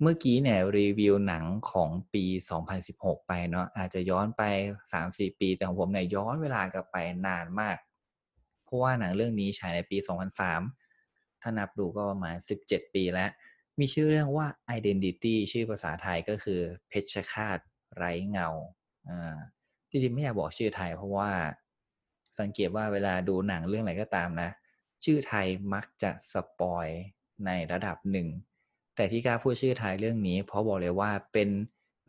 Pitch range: 90-115 Hz